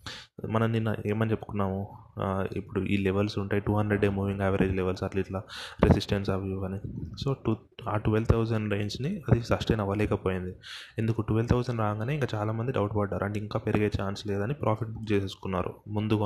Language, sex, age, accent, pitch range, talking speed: Telugu, male, 20-39, native, 100-115 Hz, 170 wpm